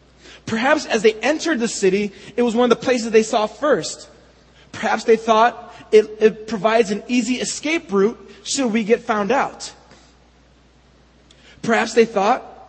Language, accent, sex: English, American, male